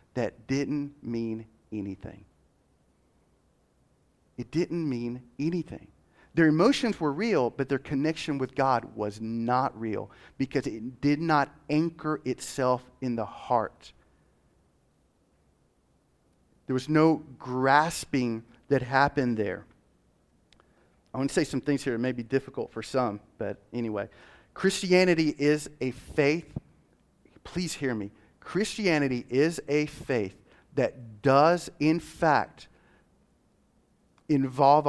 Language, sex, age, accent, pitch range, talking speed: English, male, 40-59, American, 120-150 Hz, 115 wpm